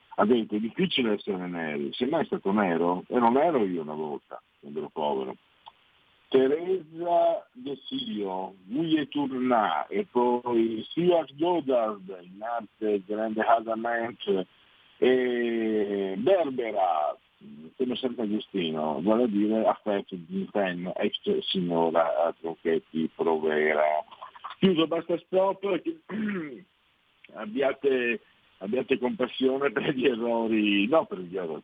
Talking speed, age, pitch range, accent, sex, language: 115 wpm, 50-69, 90-130 Hz, native, male, Italian